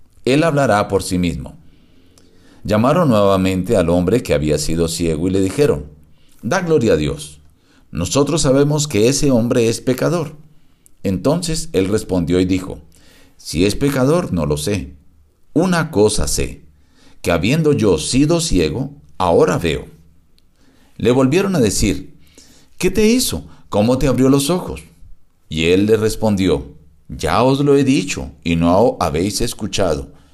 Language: Spanish